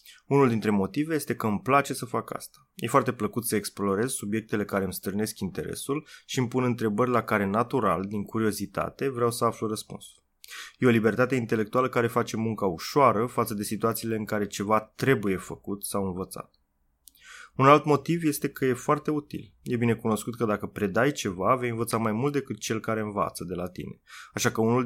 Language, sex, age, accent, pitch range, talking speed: Romanian, male, 20-39, native, 105-130 Hz, 190 wpm